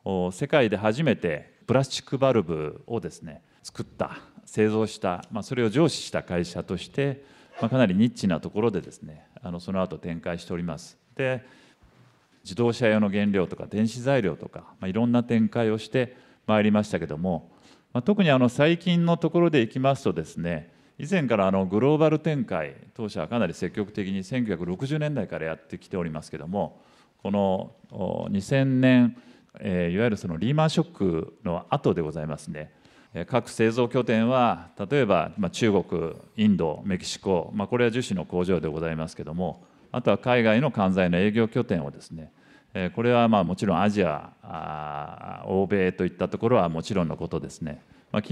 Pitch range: 90-130 Hz